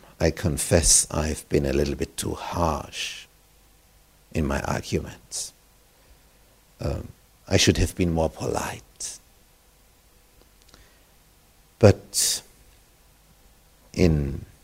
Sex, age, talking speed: male, 60-79, 85 wpm